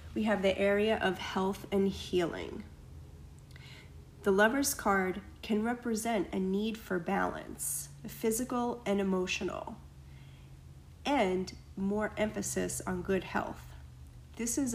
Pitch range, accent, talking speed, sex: 175-210 Hz, American, 115 wpm, female